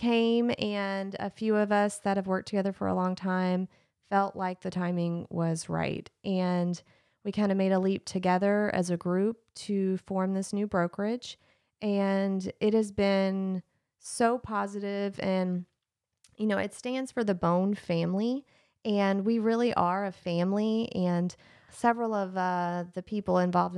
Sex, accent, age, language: female, American, 30-49, English